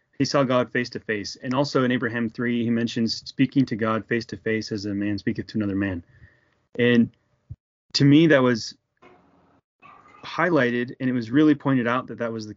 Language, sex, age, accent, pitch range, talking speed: English, male, 30-49, American, 115-135 Hz, 200 wpm